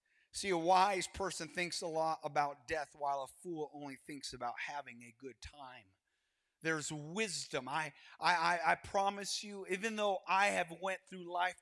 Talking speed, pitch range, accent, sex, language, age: 175 wpm, 150-190 Hz, American, male, English, 30-49